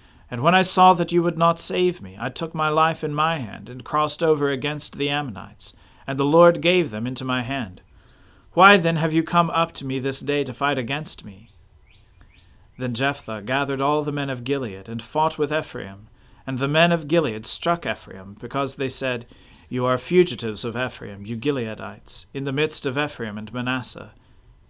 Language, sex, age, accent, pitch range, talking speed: English, male, 40-59, American, 110-150 Hz, 195 wpm